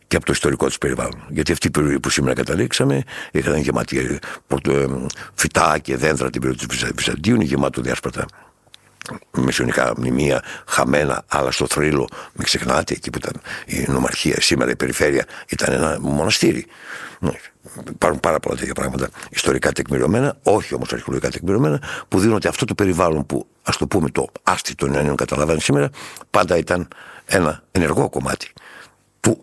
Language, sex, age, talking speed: Greek, male, 60-79, 155 wpm